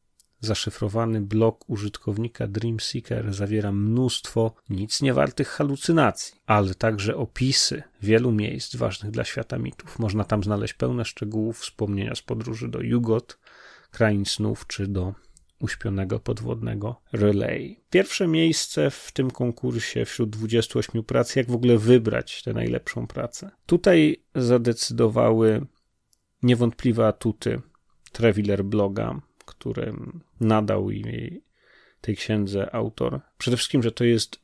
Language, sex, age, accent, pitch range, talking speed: Polish, male, 30-49, native, 105-120 Hz, 115 wpm